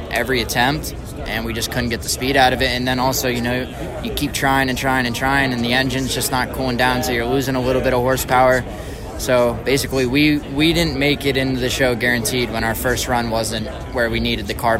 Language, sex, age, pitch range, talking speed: English, male, 20-39, 115-130 Hz, 245 wpm